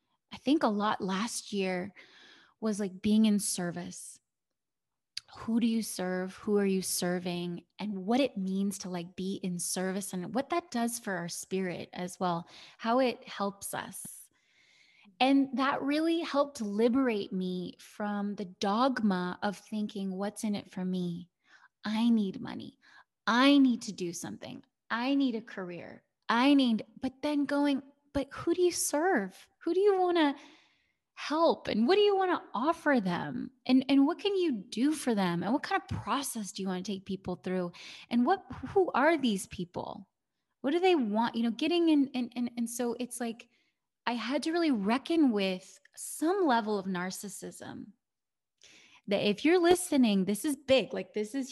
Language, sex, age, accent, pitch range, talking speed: English, female, 20-39, American, 195-280 Hz, 180 wpm